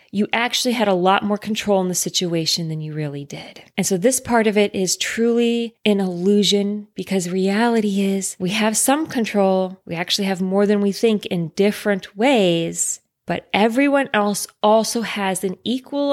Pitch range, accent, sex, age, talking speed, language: 190-225 Hz, American, female, 20-39, 180 wpm, English